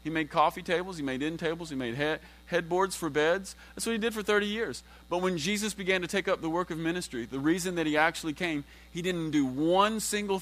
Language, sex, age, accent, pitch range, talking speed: English, male, 30-49, American, 130-170 Hz, 240 wpm